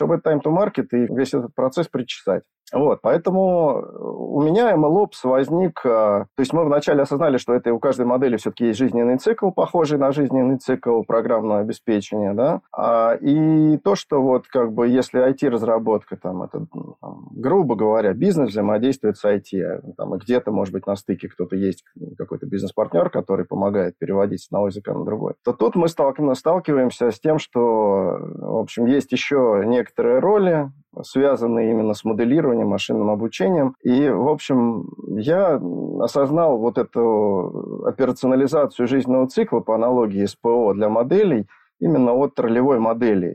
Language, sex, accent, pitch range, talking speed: Russian, male, native, 110-140 Hz, 150 wpm